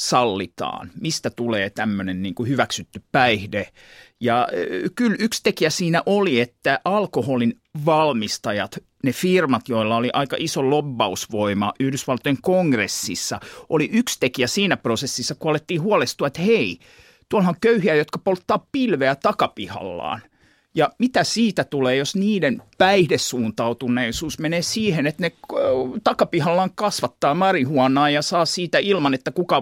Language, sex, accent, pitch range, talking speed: Finnish, male, native, 120-175 Hz, 125 wpm